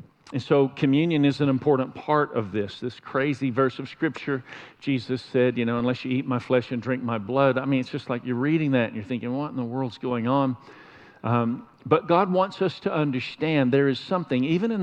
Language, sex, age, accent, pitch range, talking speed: English, male, 50-69, American, 125-150 Hz, 225 wpm